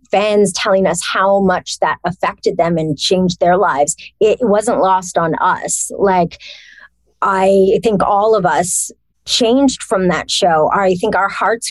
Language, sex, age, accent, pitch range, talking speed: English, female, 30-49, American, 185-245 Hz, 160 wpm